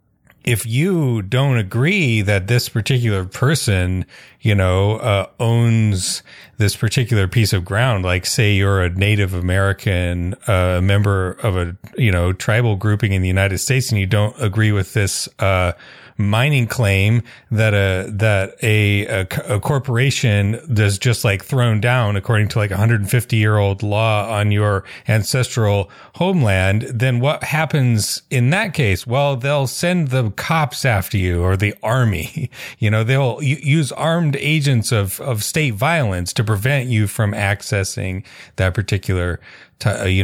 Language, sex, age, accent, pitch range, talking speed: English, male, 30-49, American, 100-130 Hz, 150 wpm